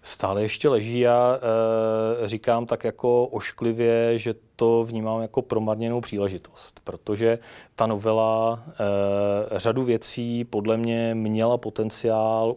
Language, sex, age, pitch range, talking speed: Czech, male, 30-49, 100-115 Hz, 110 wpm